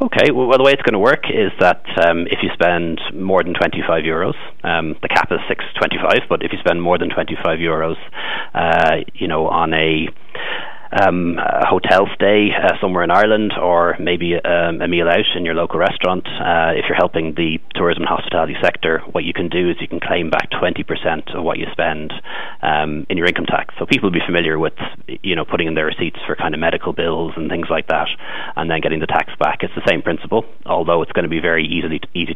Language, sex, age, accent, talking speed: English, male, 30-49, Irish, 225 wpm